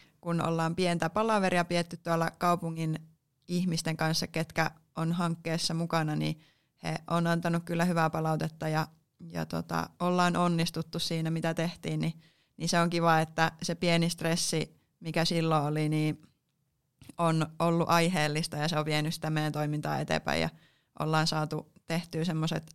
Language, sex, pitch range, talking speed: Finnish, female, 155-175 Hz, 150 wpm